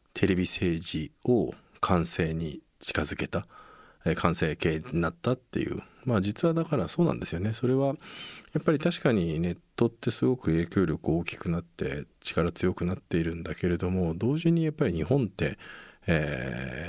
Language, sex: Japanese, male